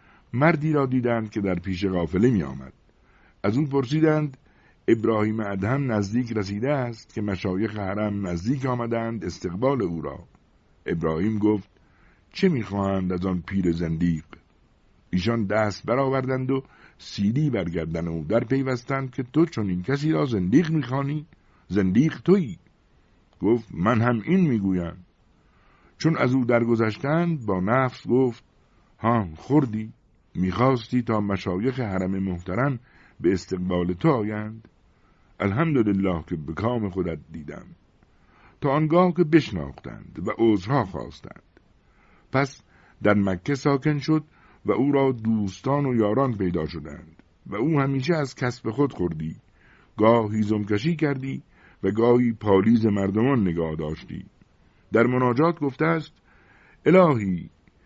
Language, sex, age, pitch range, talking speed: Persian, male, 60-79, 95-135 Hz, 130 wpm